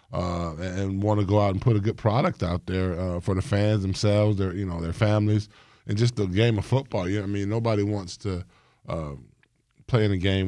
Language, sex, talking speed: English, male, 245 wpm